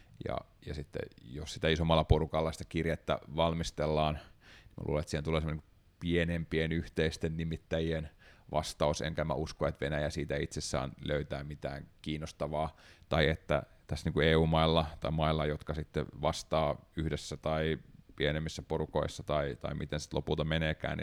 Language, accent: Finnish, native